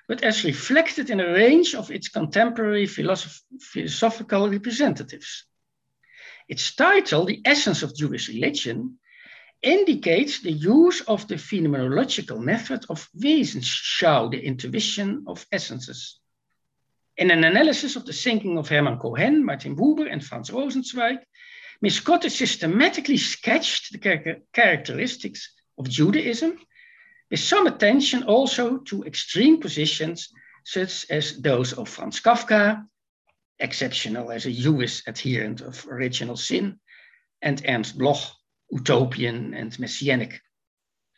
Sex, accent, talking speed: male, Dutch, 120 wpm